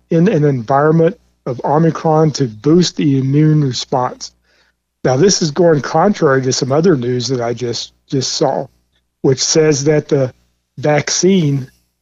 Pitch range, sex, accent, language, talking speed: 130-160 Hz, male, American, English, 145 wpm